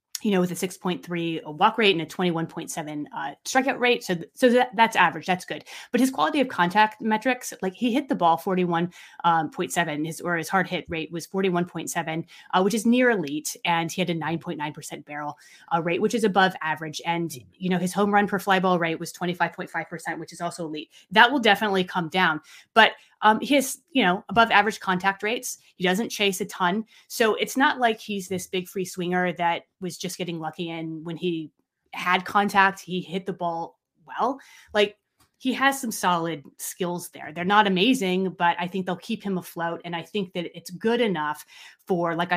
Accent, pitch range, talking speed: American, 165-205 Hz, 205 wpm